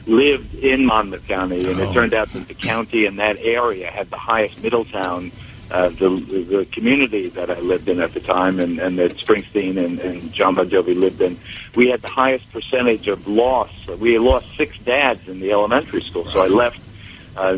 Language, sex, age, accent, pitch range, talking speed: English, male, 60-79, American, 100-115 Hz, 205 wpm